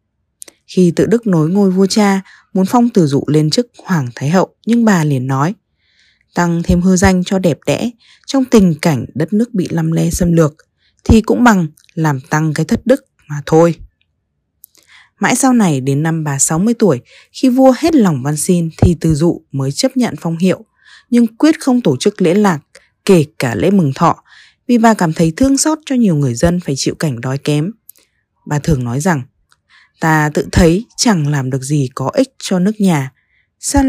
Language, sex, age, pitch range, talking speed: Vietnamese, female, 20-39, 150-215 Hz, 200 wpm